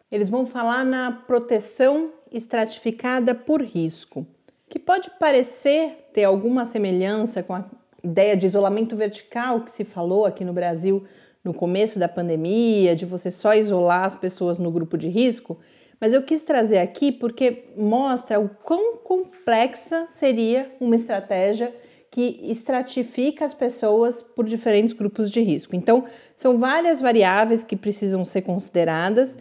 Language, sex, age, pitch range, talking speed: Portuguese, female, 40-59, 195-260 Hz, 145 wpm